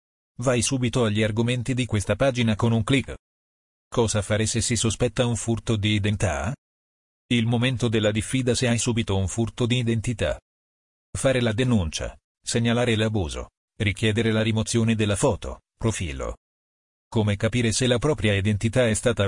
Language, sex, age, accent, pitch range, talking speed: Italian, male, 40-59, native, 100-120 Hz, 155 wpm